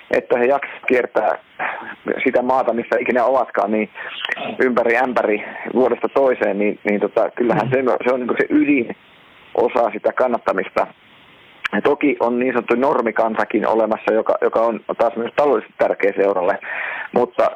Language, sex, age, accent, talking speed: Finnish, male, 30-49, native, 135 wpm